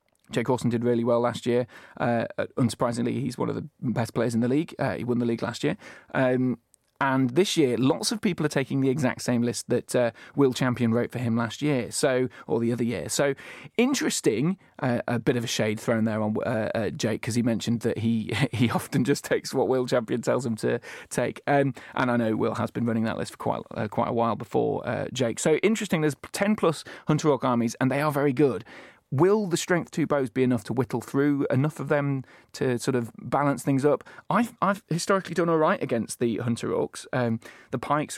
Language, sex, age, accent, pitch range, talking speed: English, male, 30-49, British, 120-150 Hz, 230 wpm